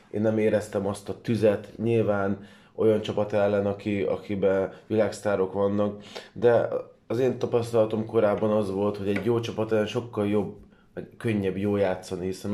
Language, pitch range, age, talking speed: Hungarian, 100-110 Hz, 20-39, 155 wpm